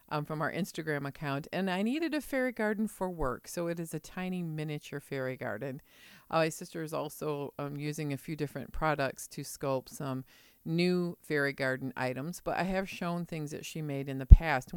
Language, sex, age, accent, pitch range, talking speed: English, female, 50-69, American, 135-165 Hz, 205 wpm